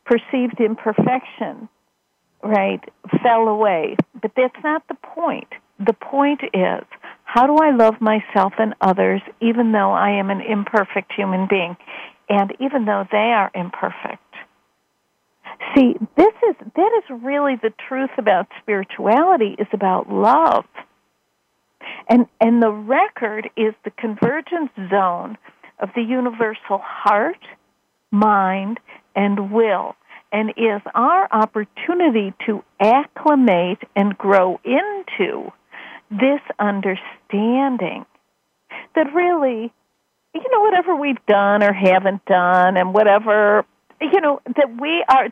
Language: English